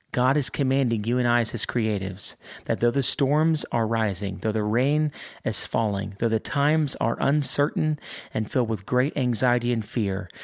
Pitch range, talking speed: 105-130 Hz, 185 wpm